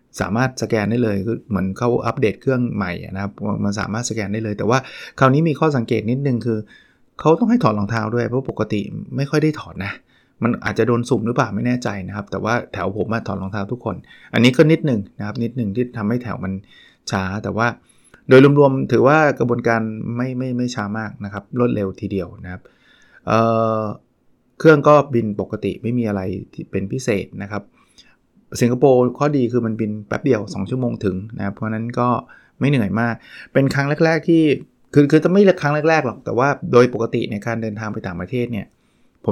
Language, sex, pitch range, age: Thai, male, 100-125 Hz, 20-39